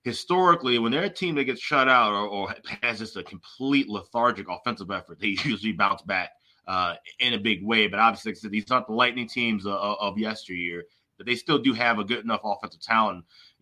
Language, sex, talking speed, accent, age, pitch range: English, male, 205 wpm, American, 30-49, 115-150 Hz